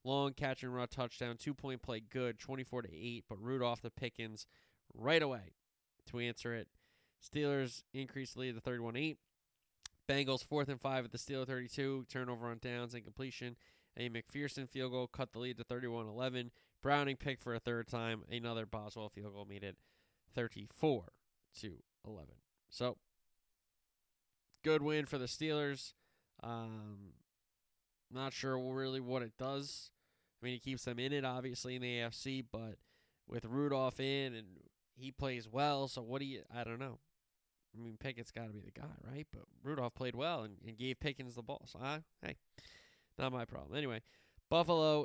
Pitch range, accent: 120-135 Hz, American